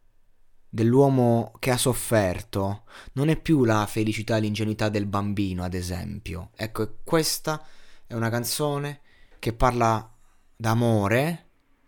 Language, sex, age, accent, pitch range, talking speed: Italian, male, 20-39, native, 105-145 Hz, 115 wpm